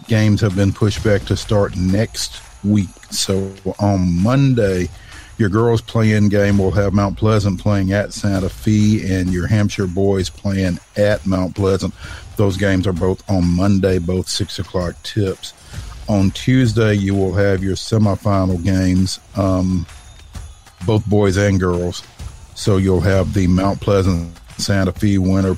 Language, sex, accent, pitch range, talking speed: English, male, American, 95-105 Hz, 150 wpm